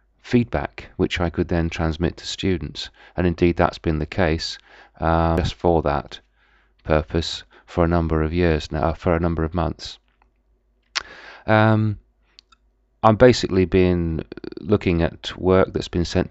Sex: male